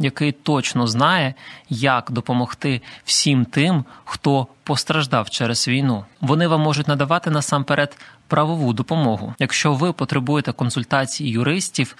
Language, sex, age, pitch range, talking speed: Ukrainian, male, 20-39, 120-150 Hz, 115 wpm